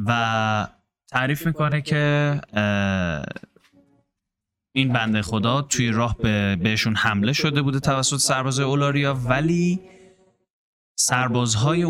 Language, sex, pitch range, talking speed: Persian, male, 110-140 Hz, 95 wpm